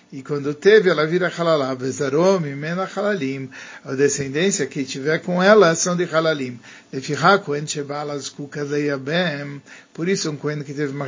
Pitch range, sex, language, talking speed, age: 145-180 Hz, male, Turkish, 120 wpm, 50-69